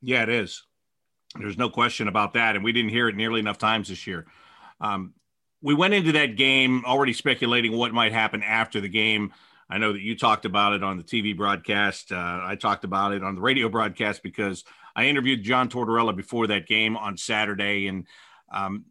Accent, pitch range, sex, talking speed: American, 105-125 Hz, male, 205 wpm